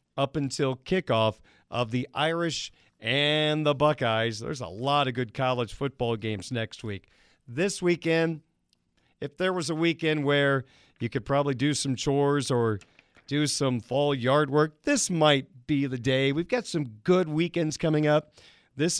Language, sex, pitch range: English, male, 125-150 Hz